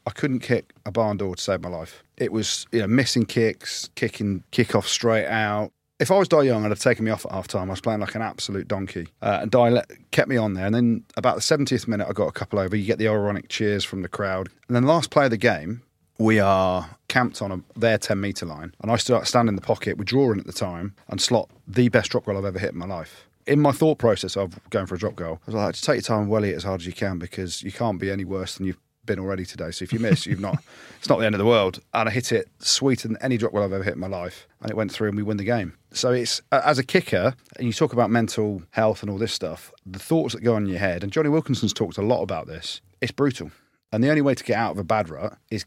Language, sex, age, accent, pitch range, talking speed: English, male, 30-49, British, 95-120 Hz, 295 wpm